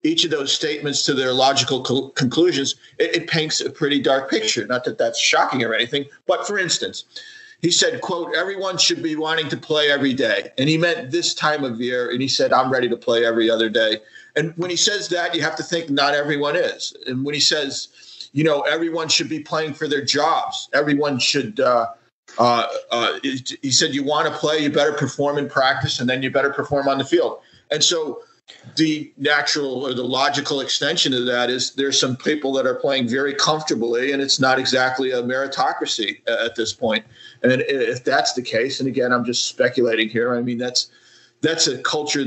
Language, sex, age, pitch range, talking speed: English, male, 40-59, 130-160 Hz, 205 wpm